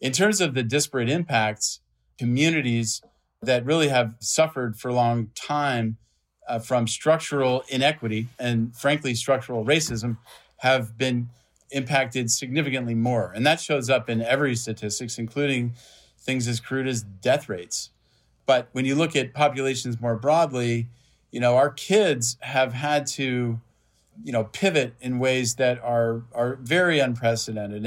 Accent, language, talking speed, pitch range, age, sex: American, English, 145 wpm, 115-140 Hz, 40-59, male